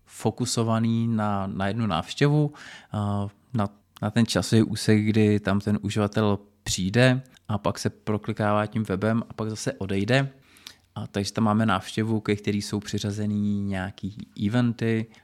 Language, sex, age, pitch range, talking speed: Czech, male, 20-39, 95-110 Hz, 140 wpm